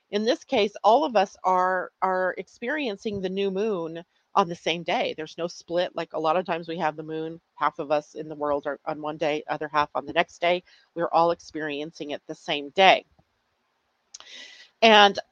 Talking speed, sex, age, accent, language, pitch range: 205 wpm, female, 40-59, American, English, 165-215 Hz